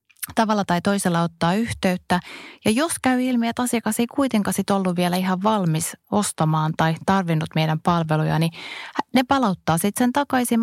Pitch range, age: 165-200 Hz, 20-39